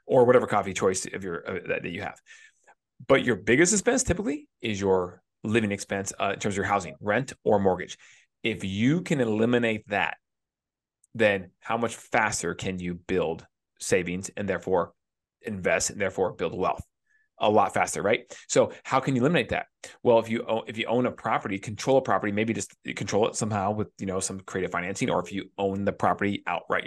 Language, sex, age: English, male, 30-49